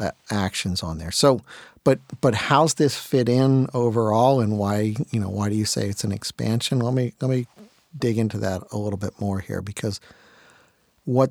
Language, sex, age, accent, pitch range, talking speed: English, male, 50-69, American, 100-125 Hz, 190 wpm